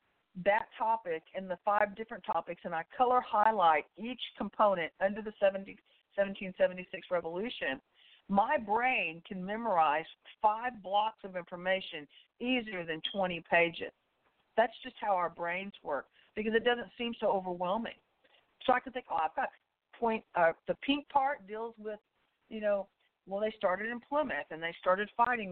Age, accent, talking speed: 50-69, American, 160 wpm